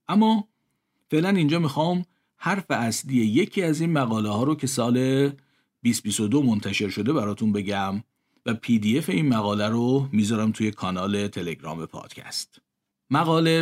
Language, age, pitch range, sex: Persian, 50-69, 105-140 Hz, male